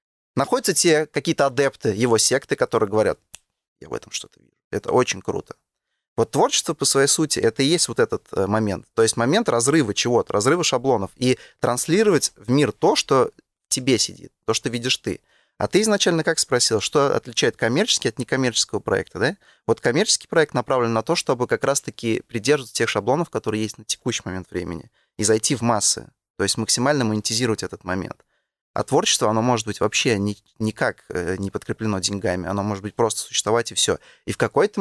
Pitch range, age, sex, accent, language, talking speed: 105-140 Hz, 20-39, male, native, Russian, 185 wpm